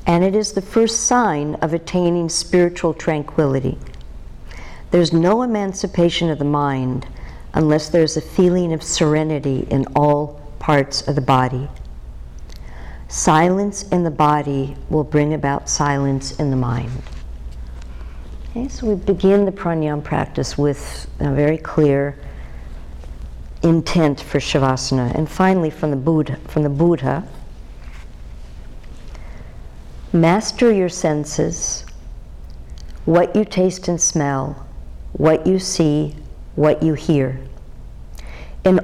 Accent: American